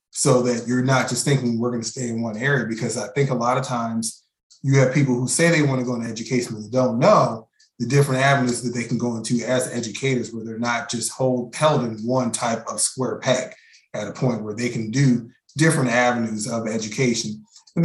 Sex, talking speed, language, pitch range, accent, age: male, 230 wpm, English, 115-140 Hz, American, 20-39